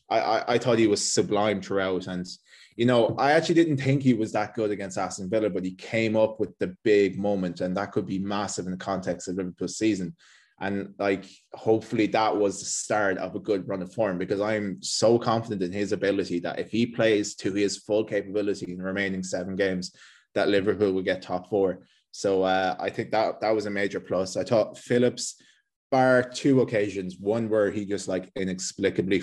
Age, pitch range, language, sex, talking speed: 20-39, 95-110 Hz, English, male, 205 wpm